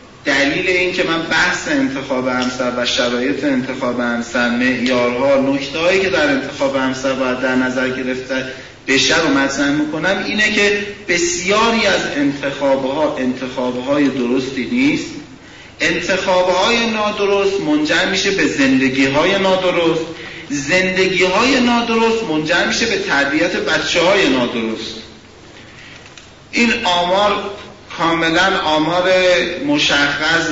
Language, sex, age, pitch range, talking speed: Persian, male, 40-59, 130-185 Hz, 105 wpm